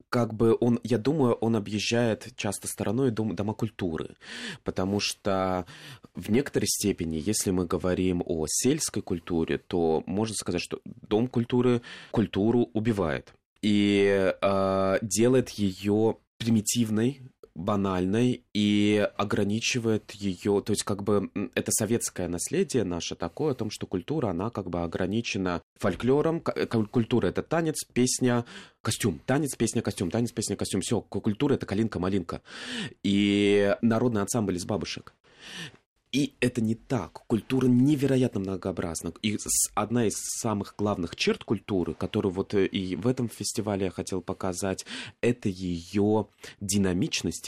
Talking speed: 130 wpm